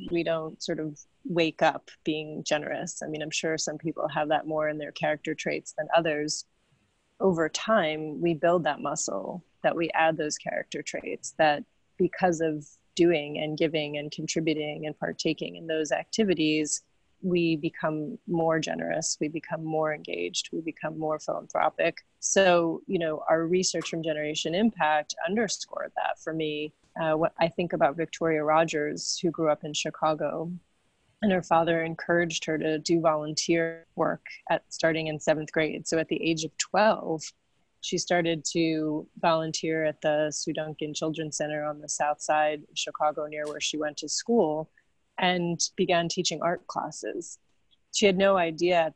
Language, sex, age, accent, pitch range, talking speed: English, female, 30-49, American, 155-170 Hz, 165 wpm